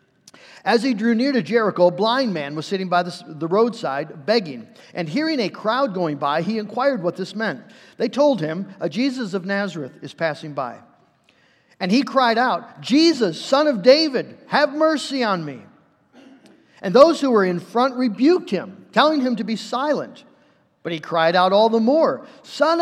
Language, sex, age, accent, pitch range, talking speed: English, male, 50-69, American, 175-260 Hz, 180 wpm